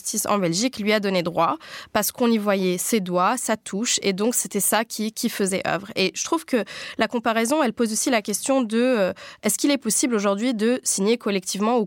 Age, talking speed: 20-39, 220 wpm